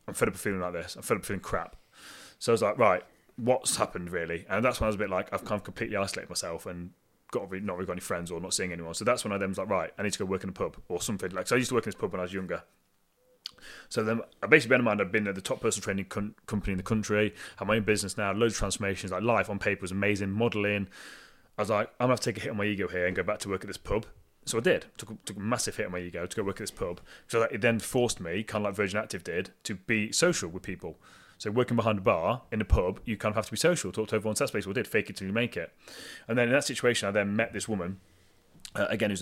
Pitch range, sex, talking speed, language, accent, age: 95-110 Hz, male, 325 wpm, English, British, 30-49